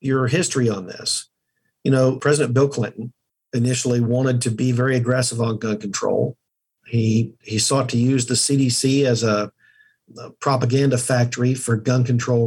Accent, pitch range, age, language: American, 120-140 Hz, 50-69, English